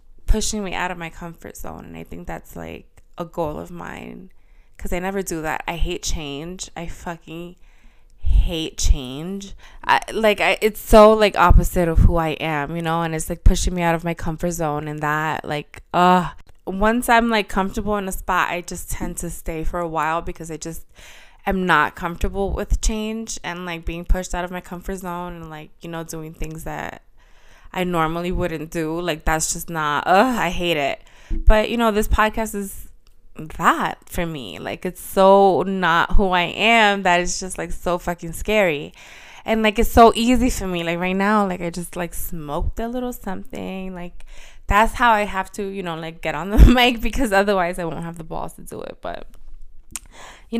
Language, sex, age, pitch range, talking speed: English, female, 20-39, 165-205 Hz, 205 wpm